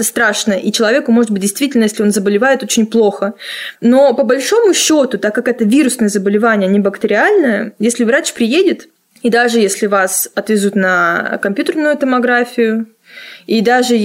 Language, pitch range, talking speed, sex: Russian, 205-260 Hz, 150 wpm, female